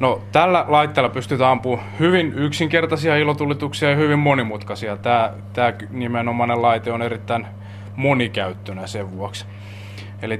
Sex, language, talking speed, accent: male, Finnish, 120 wpm, native